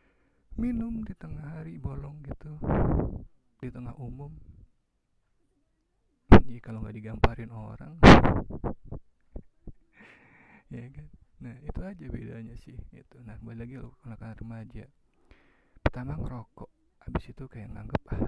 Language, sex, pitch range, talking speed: Indonesian, male, 105-125 Hz, 115 wpm